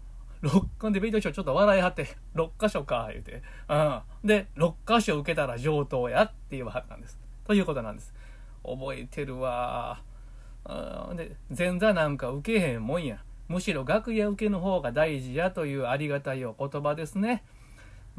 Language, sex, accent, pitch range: Japanese, male, native, 120-180 Hz